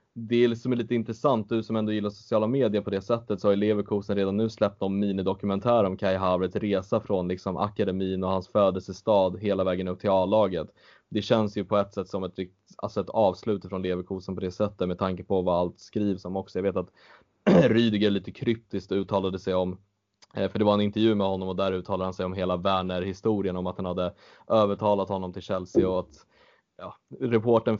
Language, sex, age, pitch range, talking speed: Swedish, male, 10-29, 90-105 Hz, 210 wpm